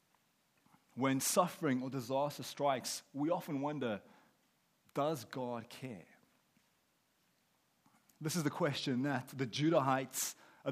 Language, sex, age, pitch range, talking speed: English, male, 30-49, 120-150 Hz, 105 wpm